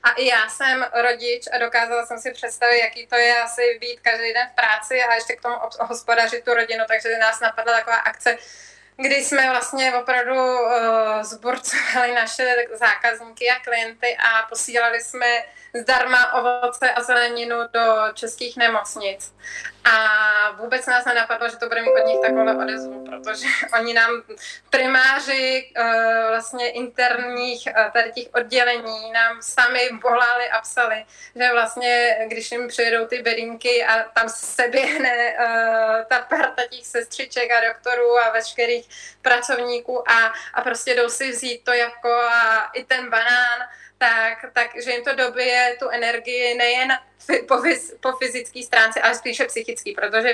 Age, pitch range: 20-39, 225-245 Hz